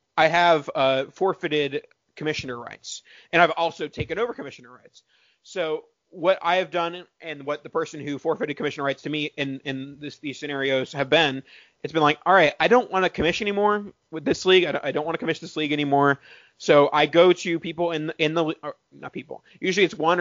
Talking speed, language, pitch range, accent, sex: 215 wpm, English, 145-180 Hz, American, male